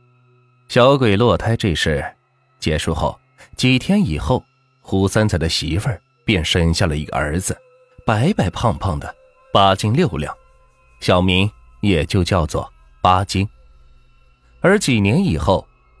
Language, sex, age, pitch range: Chinese, male, 30-49, 85-130 Hz